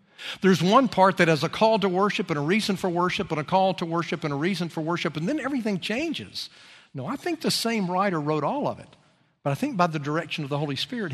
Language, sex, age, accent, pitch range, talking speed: English, male, 50-69, American, 150-205 Hz, 260 wpm